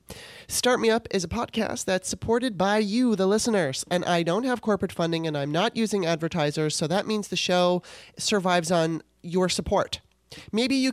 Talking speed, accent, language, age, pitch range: 185 wpm, American, English, 30-49, 160-205 Hz